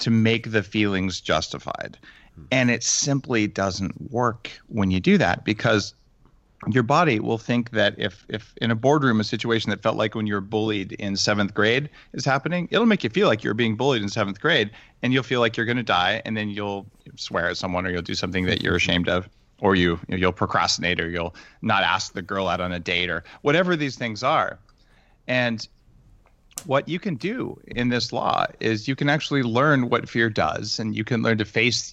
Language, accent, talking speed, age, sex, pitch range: English, American, 215 wpm, 40-59, male, 95-120 Hz